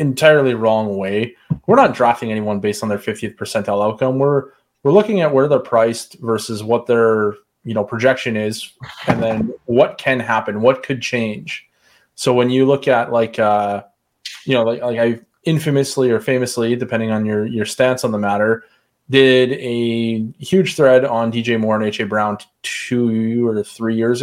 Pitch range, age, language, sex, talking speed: 115-140 Hz, 20-39, English, male, 180 wpm